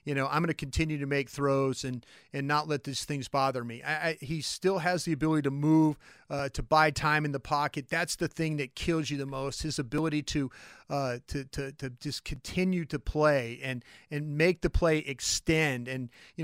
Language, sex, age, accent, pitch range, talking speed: English, male, 40-59, American, 145-165 Hz, 220 wpm